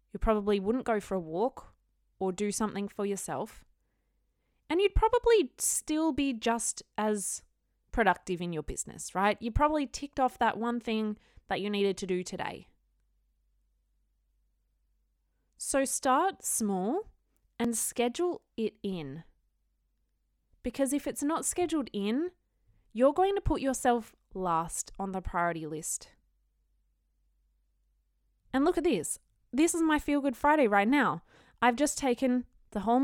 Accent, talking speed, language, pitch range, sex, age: Australian, 140 wpm, English, 190-265 Hz, female, 20-39